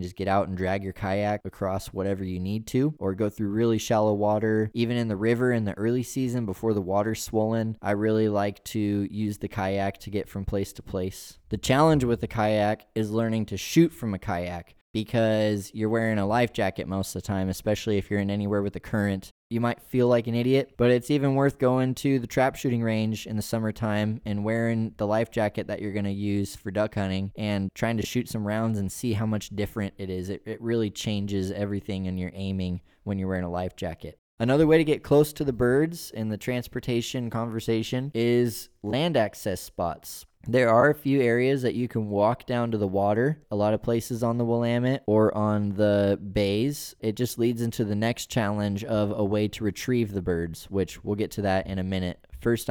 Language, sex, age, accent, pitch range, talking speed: English, male, 20-39, American, 100-115 Hz, 220 wpm